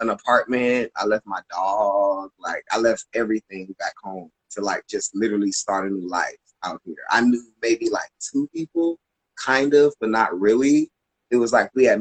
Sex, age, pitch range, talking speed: male, 20-39, 105-125 Hz, 190 wpm